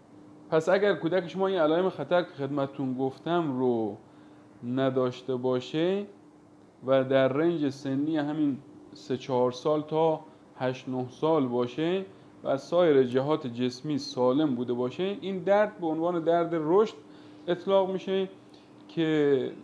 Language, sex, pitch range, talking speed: Persian, male, 130-170 Hz, 120 wpm